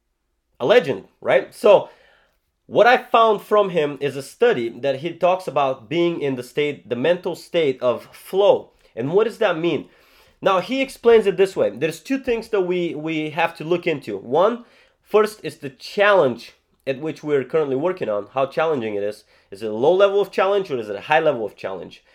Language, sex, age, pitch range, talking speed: English, male, 30-49, 145-210 Hz, 205 wpm